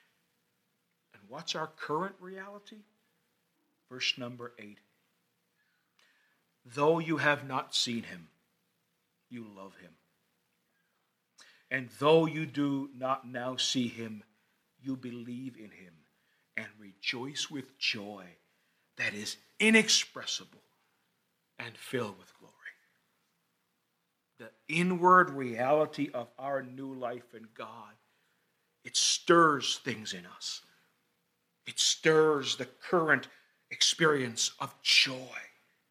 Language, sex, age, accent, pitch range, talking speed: English, male, 50-69, American, 130-190 Hz, 100 wpm